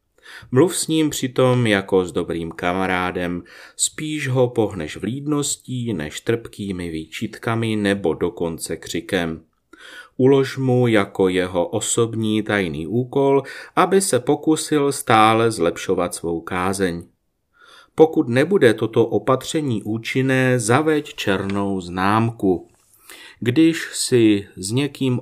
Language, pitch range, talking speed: Czech, 95-135 Hz, 105 wpm